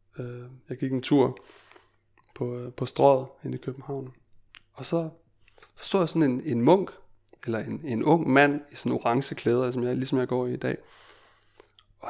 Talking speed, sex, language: 195 wpm, male, Danish